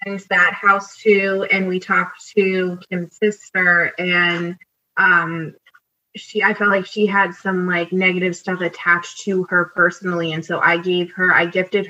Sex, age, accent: female, 20-39, American